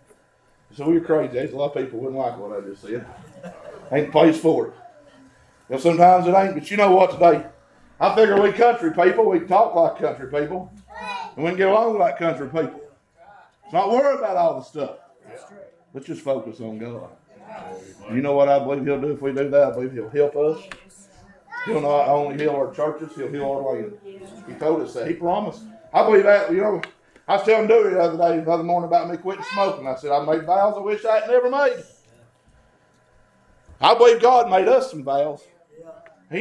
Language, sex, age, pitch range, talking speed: English, male, 50-69, 145-205 Hz, 215 wpm